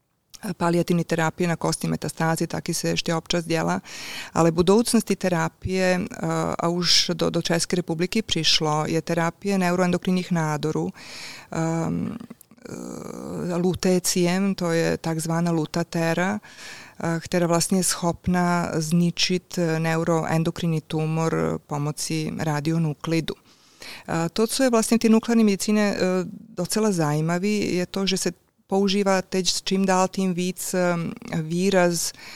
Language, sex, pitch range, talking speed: Czech, female, 160-190 Hz, 110 wpm